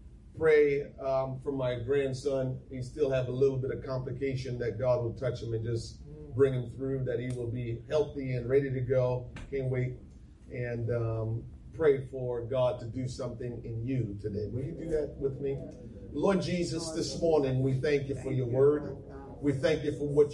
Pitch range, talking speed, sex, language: 130-180 Hz, 195 wpm, male, English